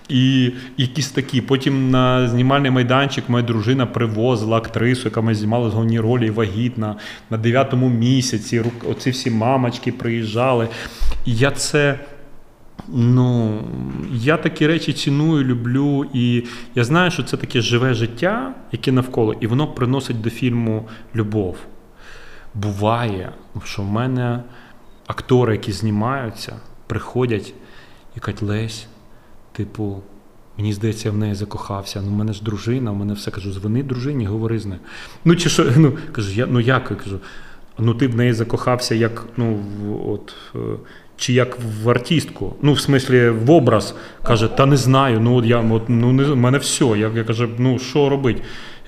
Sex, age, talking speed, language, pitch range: male, 30-49, 150 wpm, Ukrainian, 110-135 Hz